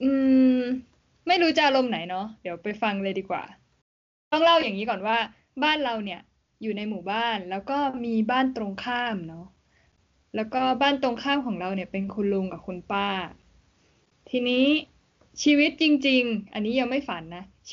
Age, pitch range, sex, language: 10-29, 200-260 Hz, female, Thai